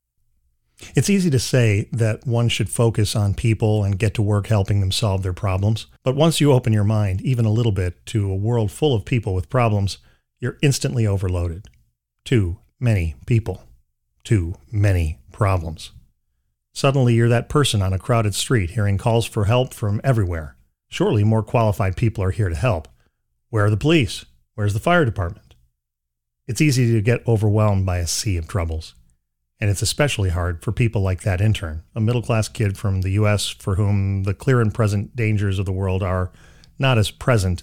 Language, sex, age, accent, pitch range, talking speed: English, male, 40-59, American, 90-120 Hz, 185 wpm